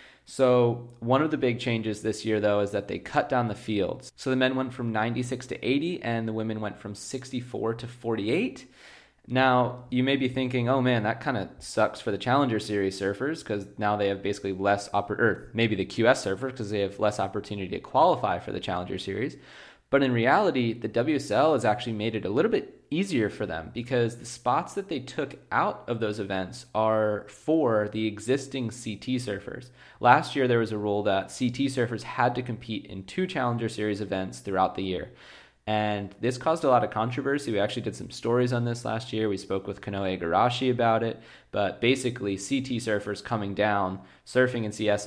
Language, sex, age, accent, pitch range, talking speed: English, male, 20-39, American, 100-125 Hz, 205 wpm